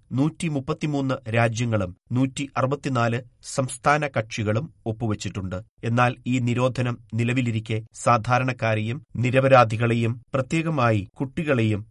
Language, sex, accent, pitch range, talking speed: Malayalam, male, native, 110-135 Hz, 70 wpm